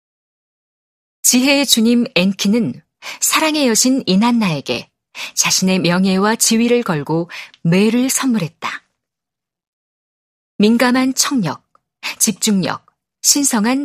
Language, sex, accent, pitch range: Korean, female, native, 185-245 Hz